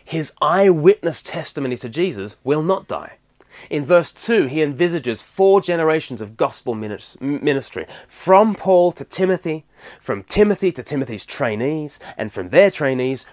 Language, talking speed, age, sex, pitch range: English, 140 wpm, 30-49, male, 135-180 Hz